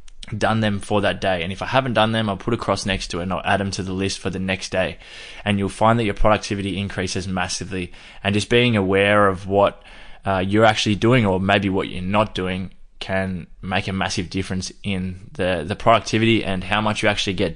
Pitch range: 95-105 Hz